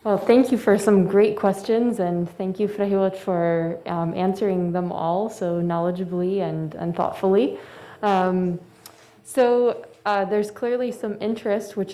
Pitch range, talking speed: 175-200 Hz, 140 wpm